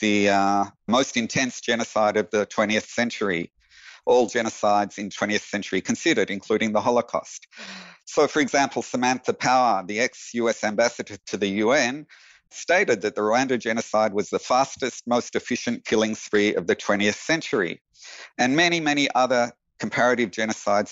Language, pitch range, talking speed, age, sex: English, 105-130 Hz, 145 wpm, 50-69, male